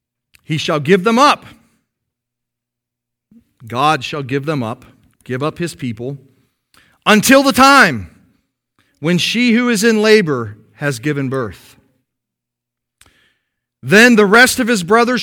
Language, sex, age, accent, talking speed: English, male, 40-59, American, 125 wpm